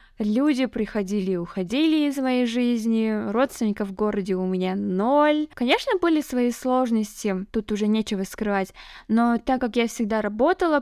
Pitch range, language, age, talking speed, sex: 210-265 Hz, Russian, 10-29, 150 wpm, female